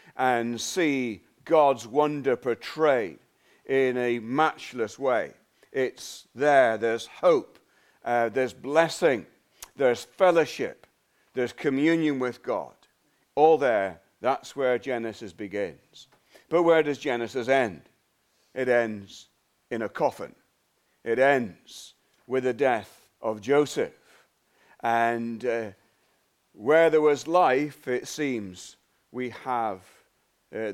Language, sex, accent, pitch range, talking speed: English, male, British, 125-160 Hz, 110 wpm